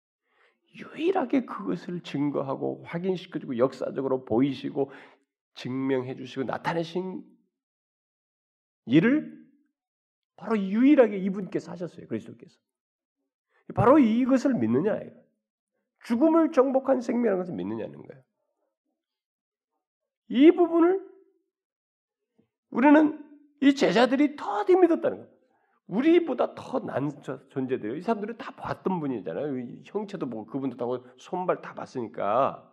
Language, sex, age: Korean, male, 40-59